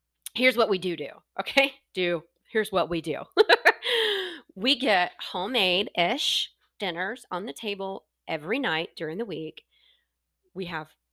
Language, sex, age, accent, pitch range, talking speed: English, female, 30-49, American, 170-235 Hz, 140 wpm